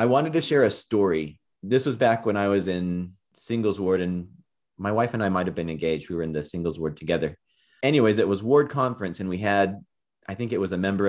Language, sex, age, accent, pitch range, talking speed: English, male, 30-49, American, 85-110 Hz, 245 wpm